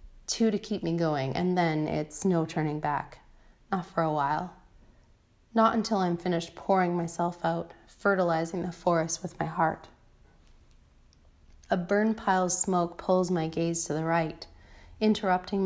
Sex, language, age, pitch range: female, English, 30-49, 160-195 Hz